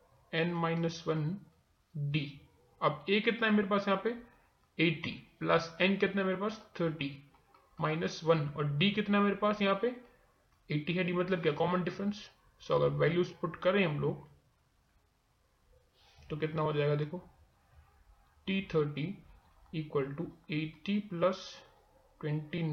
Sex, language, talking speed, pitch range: male, Hindi, 125 wpm, 150-195 Hz